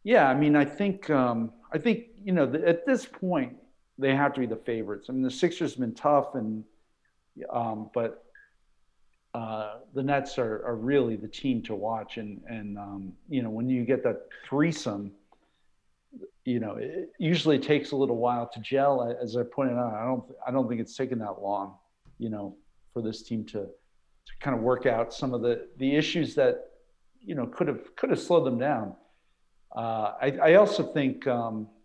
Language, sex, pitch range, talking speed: English, male, 110-145 Hz, 195 wpm